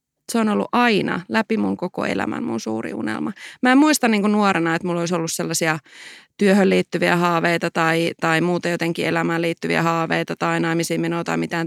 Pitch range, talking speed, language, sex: 165-210 Hz, 185 wpm, Finnish, female